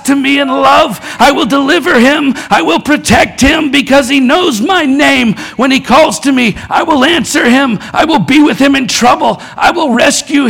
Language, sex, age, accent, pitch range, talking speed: English, male, 50-69, American, 185-255 Hz, 205 wpm